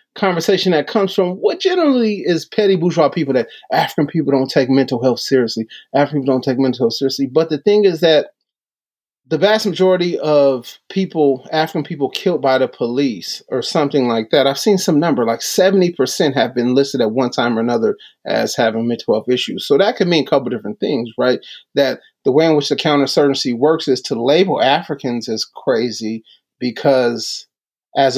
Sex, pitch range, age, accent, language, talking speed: male, 130-185 Hz, 30-49, American, English, 190 wpm